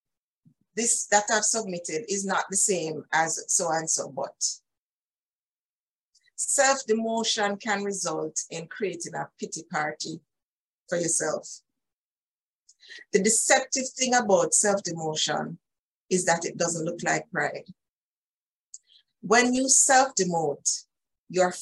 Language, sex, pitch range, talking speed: English, female, 170-230 Hz, 95 wpm